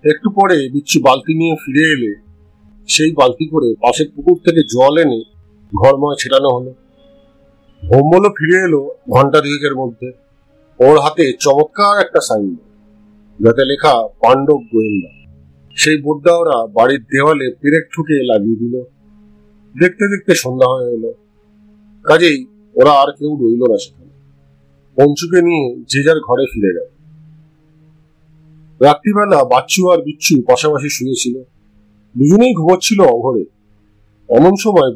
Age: 50-69